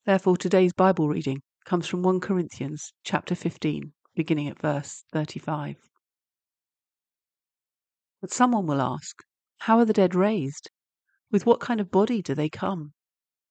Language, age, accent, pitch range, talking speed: English, 50-69, British, 150-195 Hz, 140 wpm